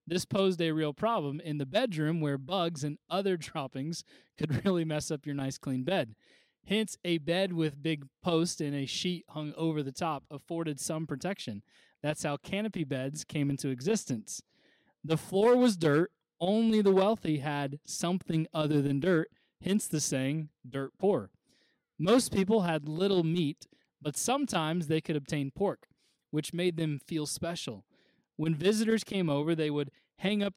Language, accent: English, American